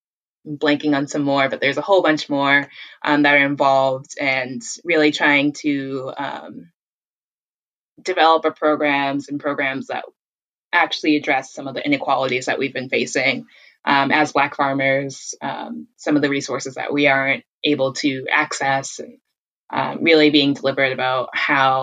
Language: English